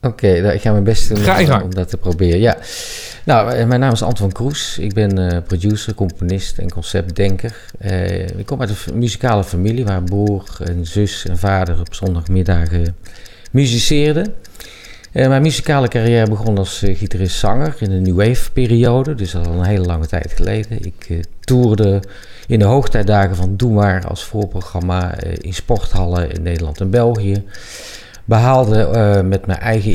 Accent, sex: Dutch, male